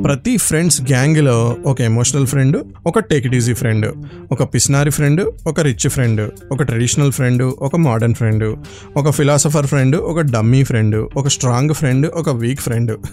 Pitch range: 120-150 Hz